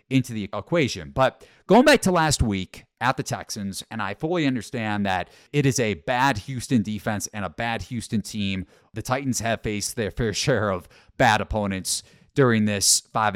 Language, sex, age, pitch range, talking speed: English, male, 30-49, 95-120 Hz, 185 wpm